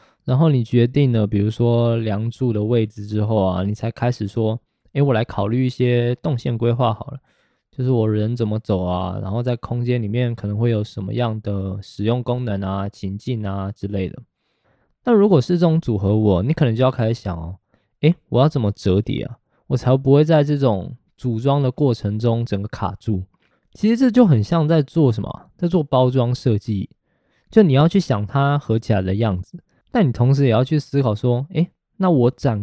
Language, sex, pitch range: Chinese, male, 105-145 Hz